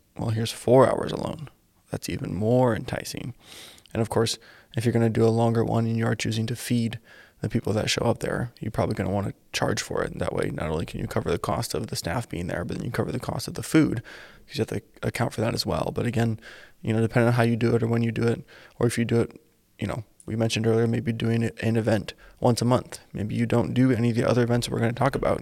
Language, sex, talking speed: English, male, 280 wpm